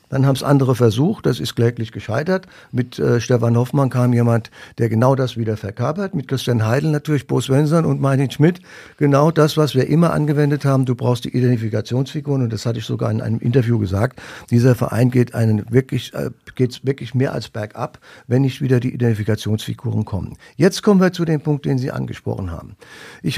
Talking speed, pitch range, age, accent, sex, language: 200 wpm, 120-155 Hz, 50-69, German, male, German